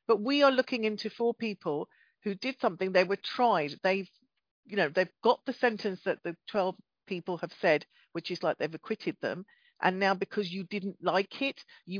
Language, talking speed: English, 200 wpm